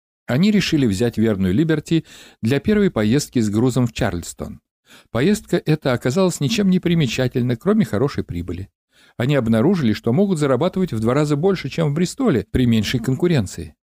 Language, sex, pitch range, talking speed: Russian, male, 110-170 Hz, 155 wpm